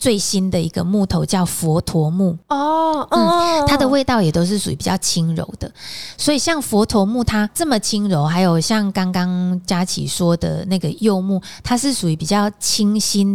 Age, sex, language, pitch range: 20-39, female, Chinese, 175-225 Hz